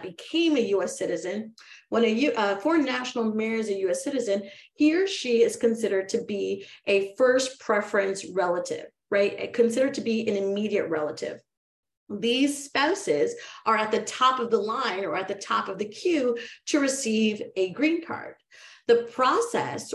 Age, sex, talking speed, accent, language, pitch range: 30-49, female, 160 wpm, American, English, 195-245 Hz